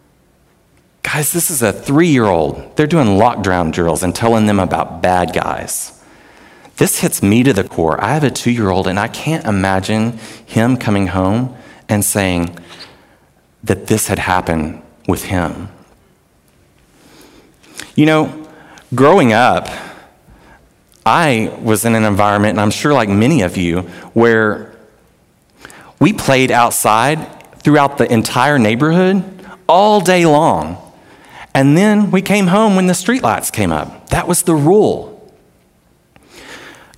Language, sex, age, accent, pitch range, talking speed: English, male, 40-59, American, 105-150 Hz, 135 wpm